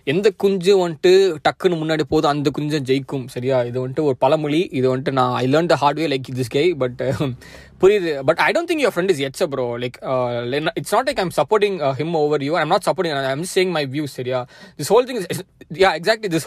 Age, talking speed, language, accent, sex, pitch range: 20-39, 215 wpm, Tamil, native, male, 135-180 Hz